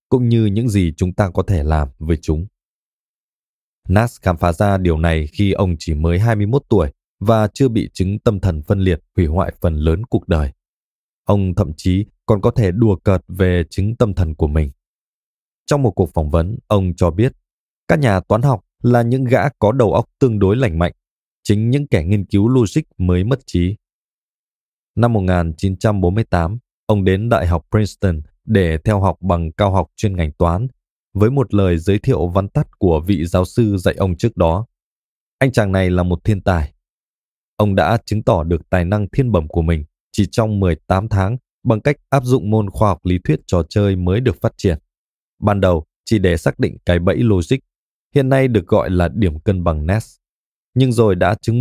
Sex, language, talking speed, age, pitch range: male, Vietnamese, 200 wpm, 20-39, 85-115 Hz